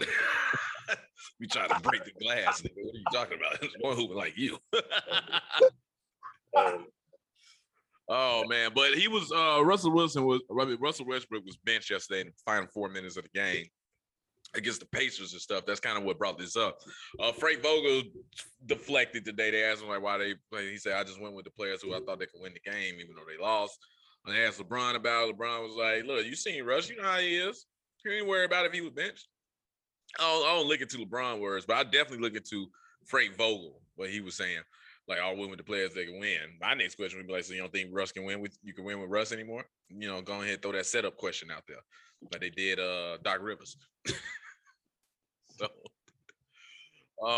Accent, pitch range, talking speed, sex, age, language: American, 100-155 Hz, 220 wpm, male, 20-39, English